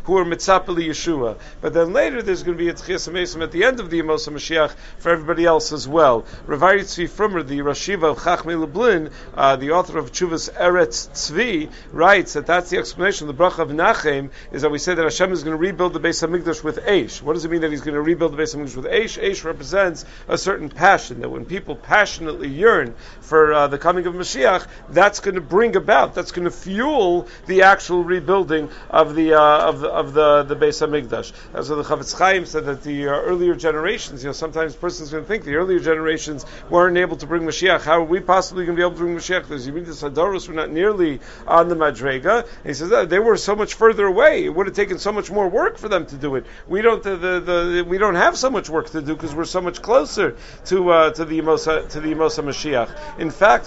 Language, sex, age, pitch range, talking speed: English, male, 50-69, 155-185 Hz, 240 wpm